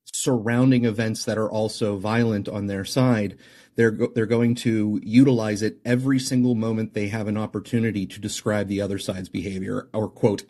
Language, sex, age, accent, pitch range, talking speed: English, male, 30-49, American, 105-120 Hz, 170 wpm